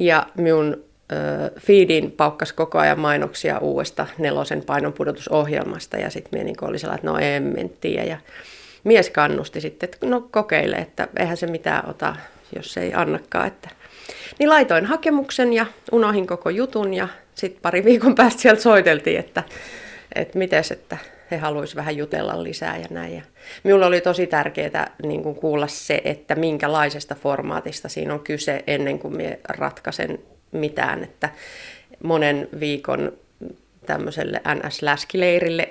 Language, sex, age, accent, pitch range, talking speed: Finnish, female, 30-49, native, 145-185 Hz, 145 wpm